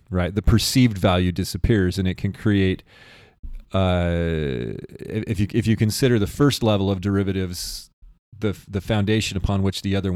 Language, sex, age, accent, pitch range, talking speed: English, male, 30-49, American, 90-110 Hz, 160 wpm